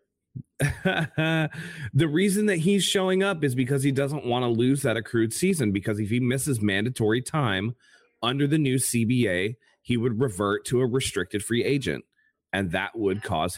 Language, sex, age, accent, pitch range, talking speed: English, male, 30-49, American, 105-125 Hz, 170 wpm